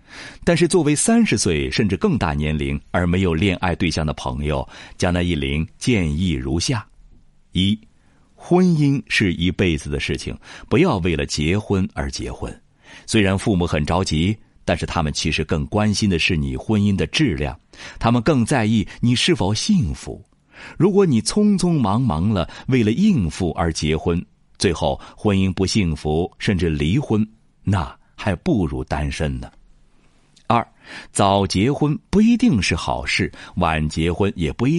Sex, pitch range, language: male, 80-120 Hz, Chinese